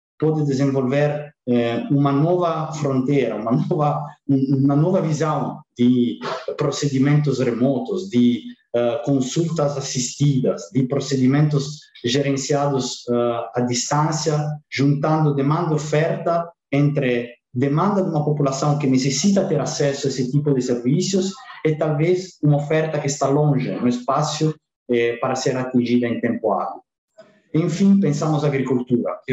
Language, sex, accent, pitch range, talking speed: English, male, Italian, 125-150 Hz, 125 wpm